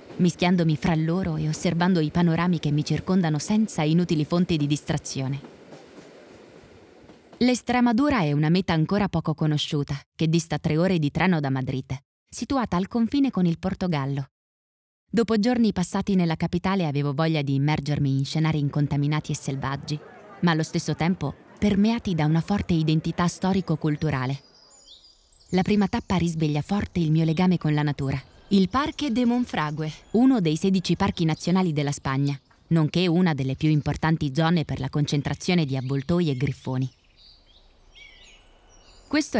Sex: female